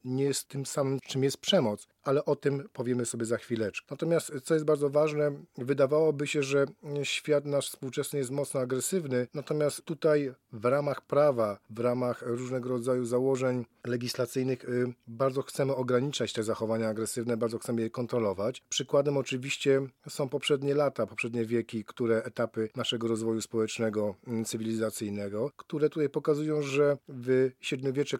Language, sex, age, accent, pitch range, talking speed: Polish, male, 40-59, native, 120-140 Hz, 145 wpm